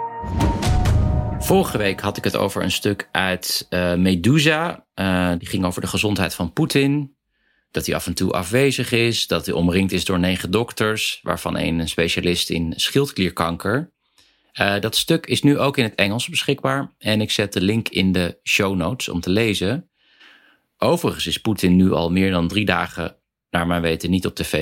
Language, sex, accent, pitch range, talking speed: Dutch, male, Dutch, 85-110 Hz, 180 wpm